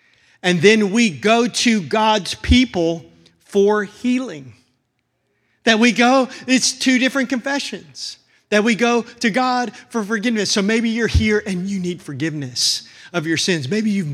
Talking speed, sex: 155 wpm, male